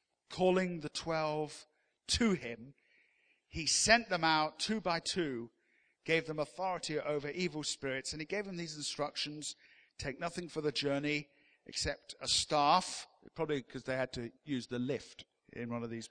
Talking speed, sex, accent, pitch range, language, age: 165 wpm, male, British, 140-200 Hz, English, 50-69